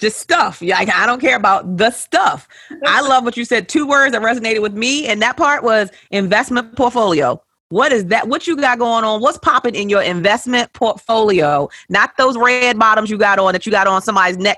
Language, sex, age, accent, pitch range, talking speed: English, female, 30-49, American, 175-225 Hz, 215 wpm